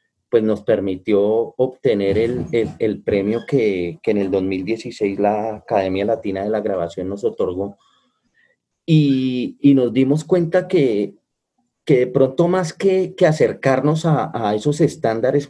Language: Spanish